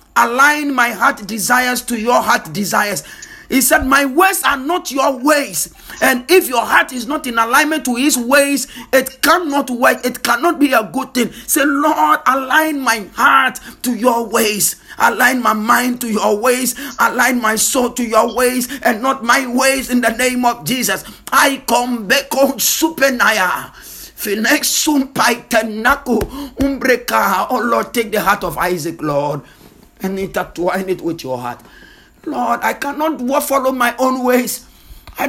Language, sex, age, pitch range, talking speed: English, male, 50-69, 195-270 Hz, 155 wpm